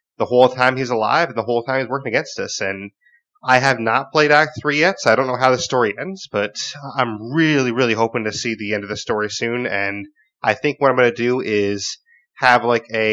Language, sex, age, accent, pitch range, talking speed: English, male, 20-39, American, 110-145 Hz, 245 wpm